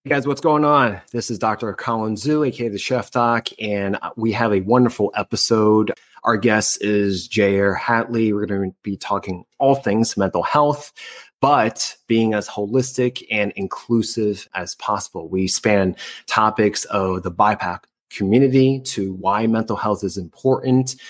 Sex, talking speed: male, 155 wpm